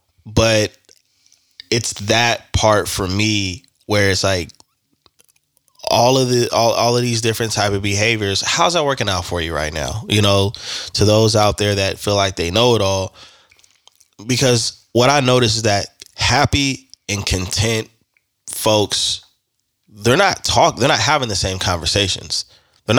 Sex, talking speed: male, 160 wpm